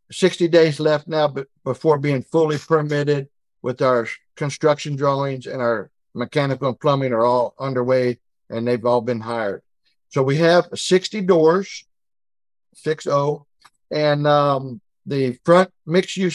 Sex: male